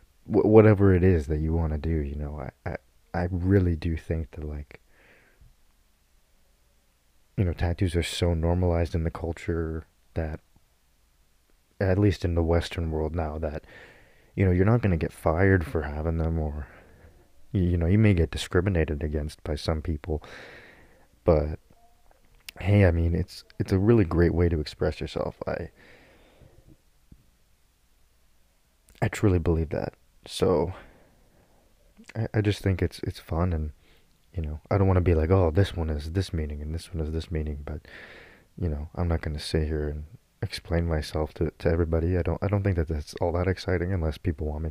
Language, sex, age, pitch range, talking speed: English, male, 30-49, 75-90 Hz, 180 wpm